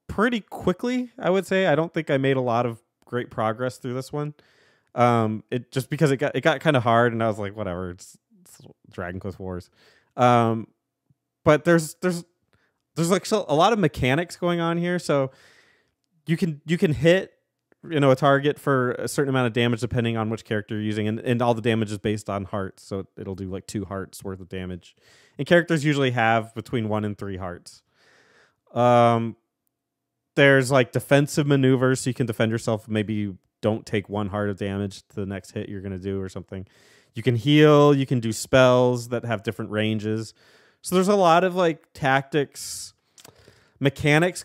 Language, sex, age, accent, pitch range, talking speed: English, male, 20-39, American, 110-150 Hz, 200 wpm